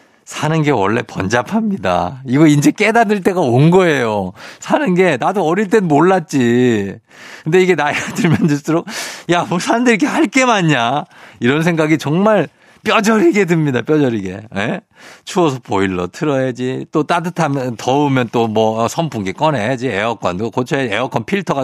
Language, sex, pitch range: Korean, male, 125-190 Hz